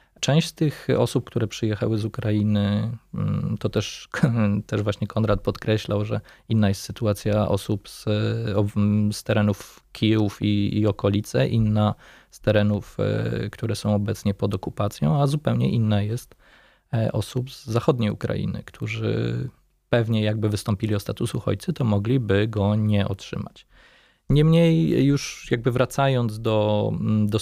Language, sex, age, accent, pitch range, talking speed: Polish, male, 20-39, native, 105-125 Hz, 130 wpm